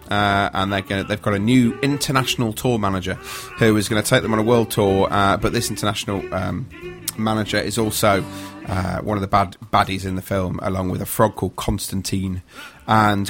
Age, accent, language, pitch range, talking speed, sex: 30-49, British, English, 100-120 Hz, 205 wpm, male